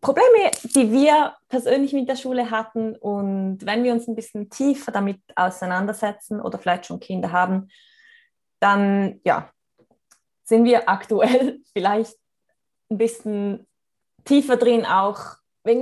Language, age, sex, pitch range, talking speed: German, 20-39, female, 190-235 Hz, 125 wpm